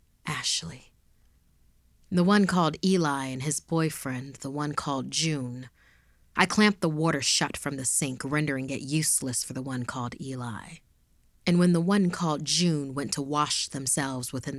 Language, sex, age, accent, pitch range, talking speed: English, female, 30-49, American, 130-165 Hz, 160 wpm